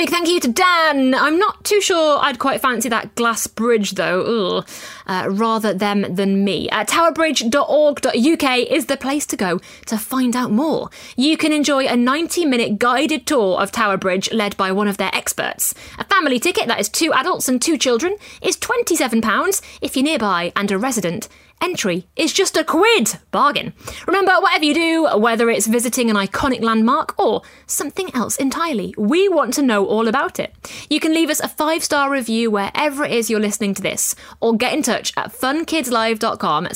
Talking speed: 185 wpm